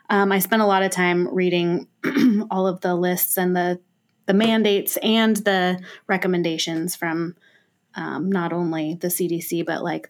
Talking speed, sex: 160 wpm, female